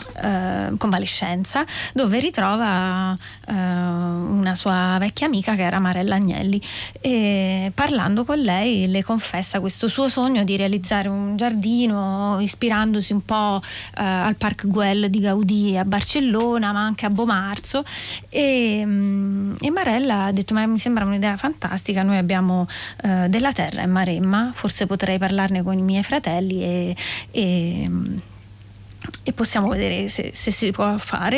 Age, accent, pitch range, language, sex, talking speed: 30-49, native, 195-225 Hz, Italian, female, 145 wpm